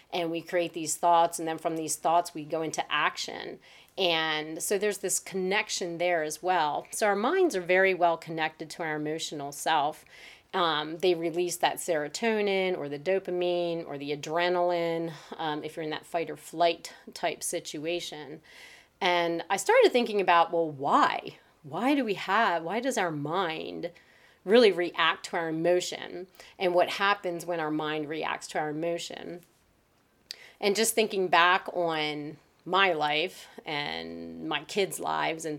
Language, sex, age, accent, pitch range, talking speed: English, female, 30-49, American, 155-180 Hz, 160 wpm